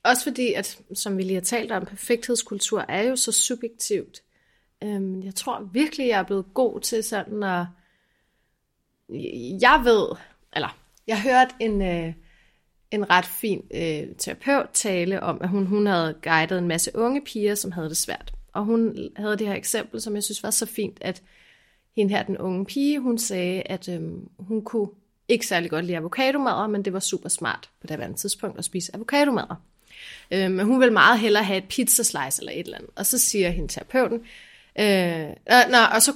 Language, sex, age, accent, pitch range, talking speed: Danish, female, 30-49, native, 185-235 Hz, 195 wpm